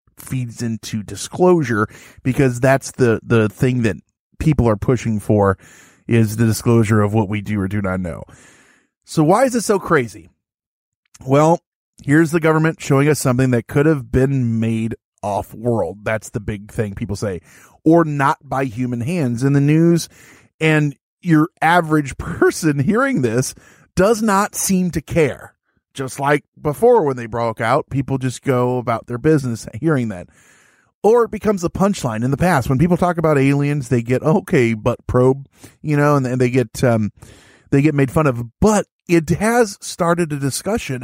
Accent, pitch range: American, 115-165 Hz